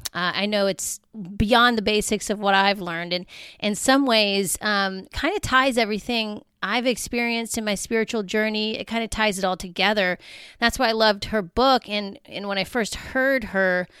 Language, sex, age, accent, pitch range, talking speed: English, female, 30-49, American, 190-230 Hz, 195 wpm